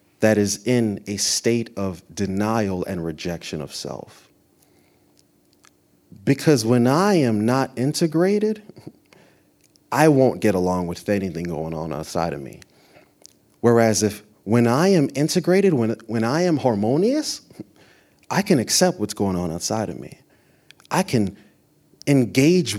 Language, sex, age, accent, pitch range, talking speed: English, male, 30-49, American, 100-145 Hz, 135 wpm